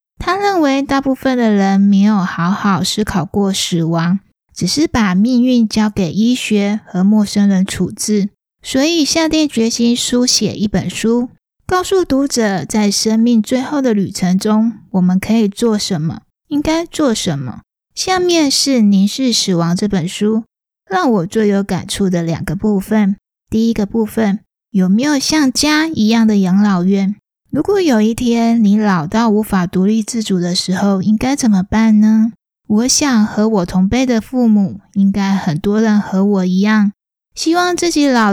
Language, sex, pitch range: Chinese, female, 195-235 Hz